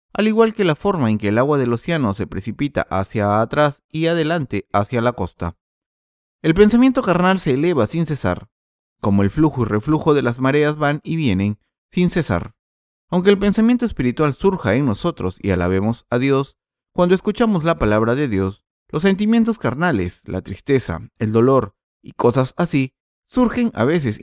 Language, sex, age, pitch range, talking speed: Spanish, male, 30-49, 100-170 Hz, 175 wpm